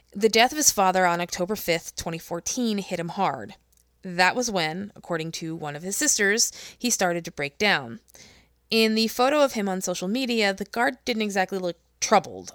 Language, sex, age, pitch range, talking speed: English, female, 20-39, 170-235 Hz, 190 wpm